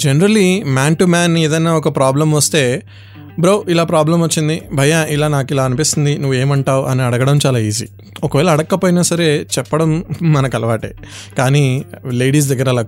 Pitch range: 125-150 Hz